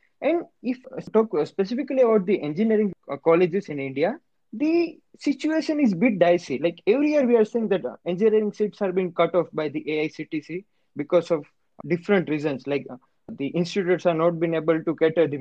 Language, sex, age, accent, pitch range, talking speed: English, male, 20-39, Indian, 155-220 Hz, 185 wpm